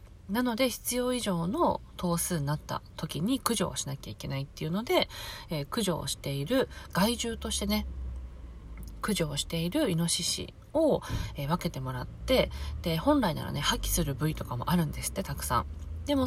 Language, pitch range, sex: Japanese, 130-205 Hz, female